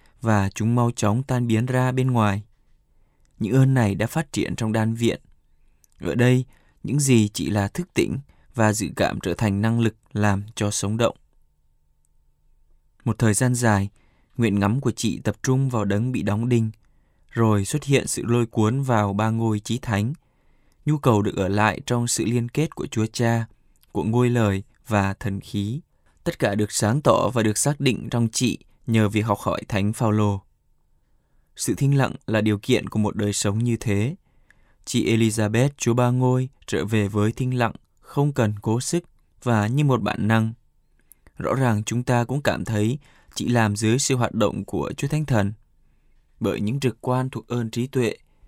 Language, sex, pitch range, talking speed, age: Vietnamese, male, 105-125 Hz, 190 wpm, 20-39